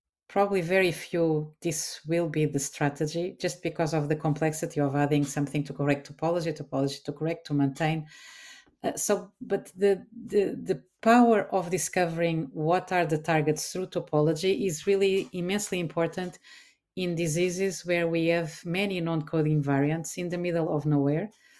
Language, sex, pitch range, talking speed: English, female, 155-185 Hz, 155 wpm